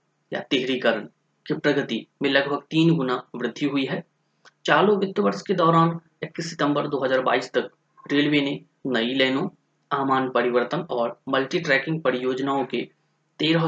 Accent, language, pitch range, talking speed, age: native, Hindi, 130-165 Hz, 135 wpm, 30-49